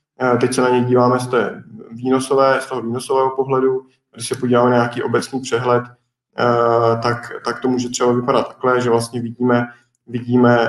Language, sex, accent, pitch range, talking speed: Czech, male, native, 120-130 Hz, 165 wpm